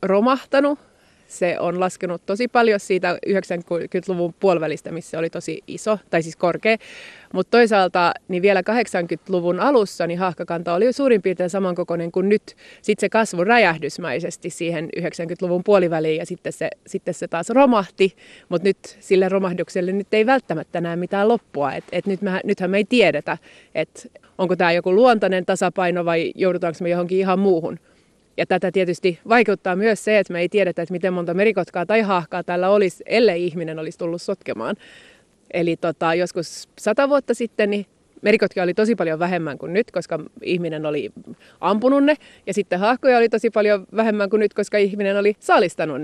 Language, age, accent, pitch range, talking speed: Finnish, 20-39, native, 175-210 Hz, 170 wpm